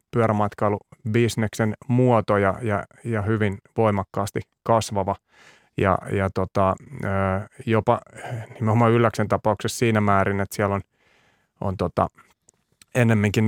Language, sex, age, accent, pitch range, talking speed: Finnish, male, 30-49, native, 100-115 Hz, 105 wpm